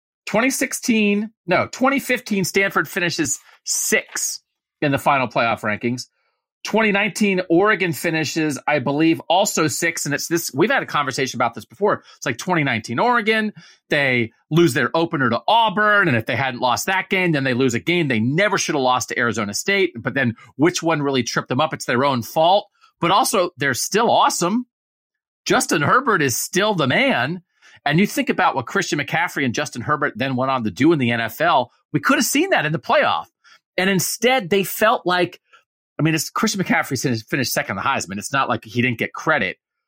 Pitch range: 135-205 Hz